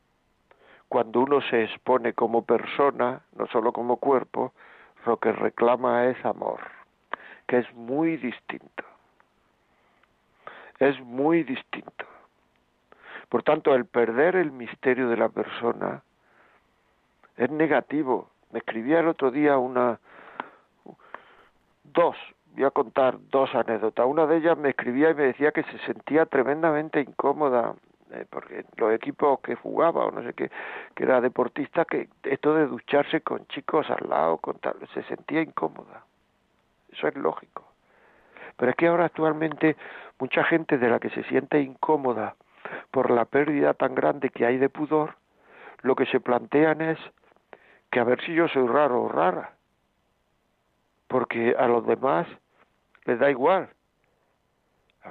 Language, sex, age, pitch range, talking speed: Spanish, male, 60-79, 120-155 Hz, 140 wpm